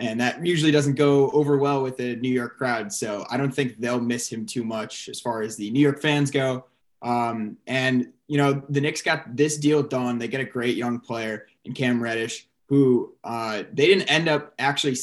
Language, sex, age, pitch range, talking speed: English, male, 20-39, 120-145 Hz, 220 wpm